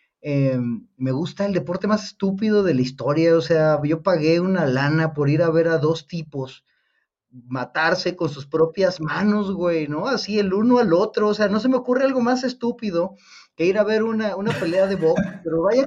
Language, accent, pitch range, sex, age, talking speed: Spanish, Mexican, 145-195 Hz, male, 30-49, 210 wpm